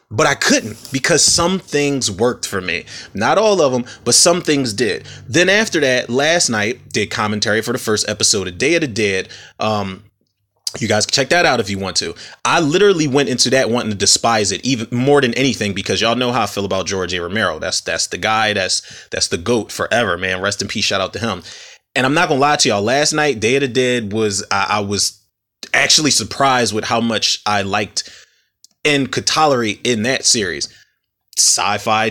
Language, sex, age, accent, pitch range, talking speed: English, male, 30-49, American, 105-135 Hz, 215 wpm